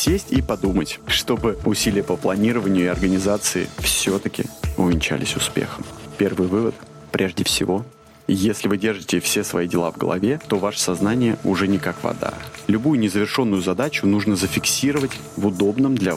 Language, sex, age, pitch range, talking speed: Russian, male, 30-49, 95-110 Hz, 145 wpm